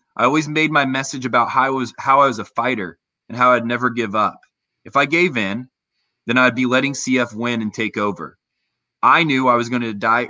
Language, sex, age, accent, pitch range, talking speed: English, male, 20-39, American, 110-135 Hz, 220 wpm